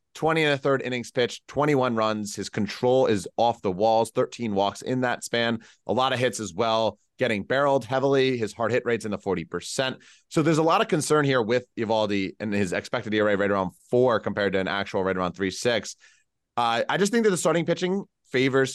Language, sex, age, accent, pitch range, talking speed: English, male, 30-49, American, 105-135 Hz, 220 wpm